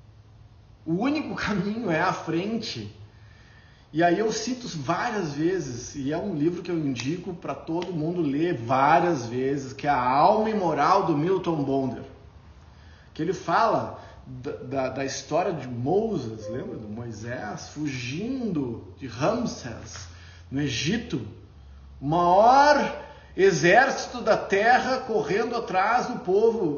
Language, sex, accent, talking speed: Portuguese, male, Brazilian, 130 wpm